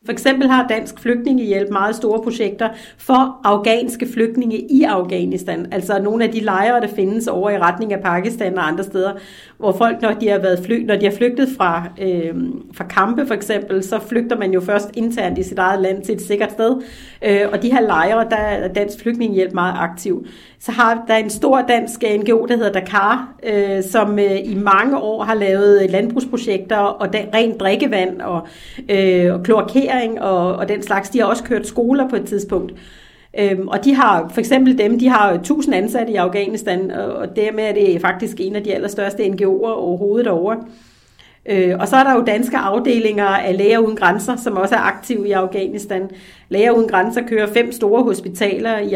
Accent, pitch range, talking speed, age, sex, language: native, 195-230 Hz, 190 wpm, 40-59, female, Danish